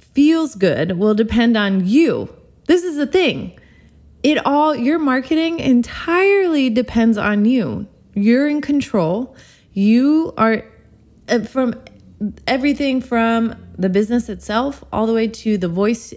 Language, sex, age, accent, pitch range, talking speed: English, female, 20-39, American, 190-250 Hz, 130 wpm